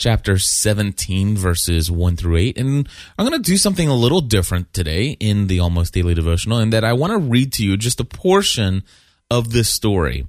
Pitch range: 90-130 Hz